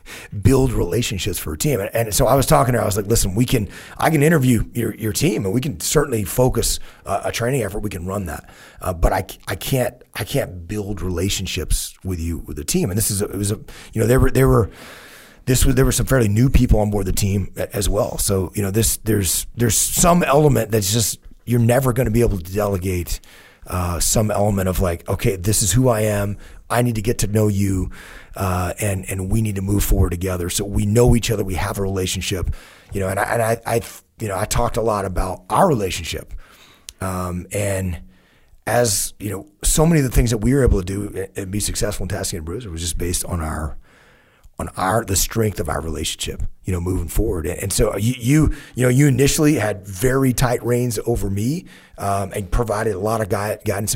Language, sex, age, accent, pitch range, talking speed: English, male, 30-49, American, 95-120 Hz, 230 wpm